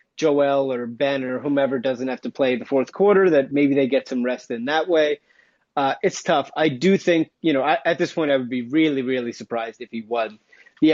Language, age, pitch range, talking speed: English, 30-49, 130-160 Hz, 230 wpm